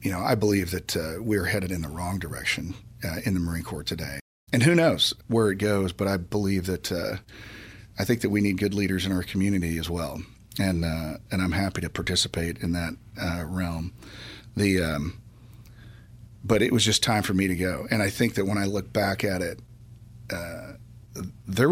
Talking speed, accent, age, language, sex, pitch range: 205 wpm, American, 40-59, English, male, 90-115 Hz